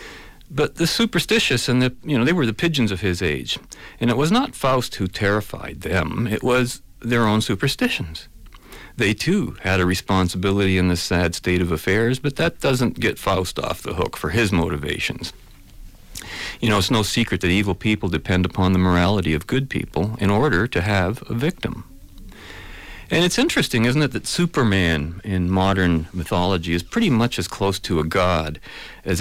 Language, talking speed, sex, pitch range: English, 185 wpm, male, 90-115 Hz